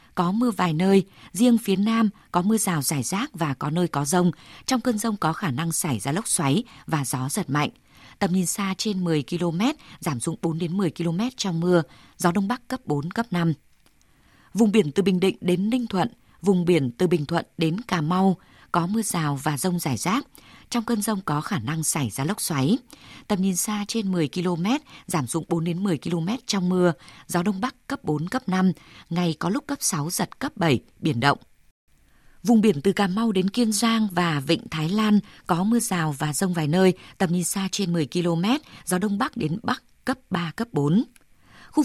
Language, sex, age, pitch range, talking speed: Vietnamese, female, 20-39, 165-210 Hz, 215 wpm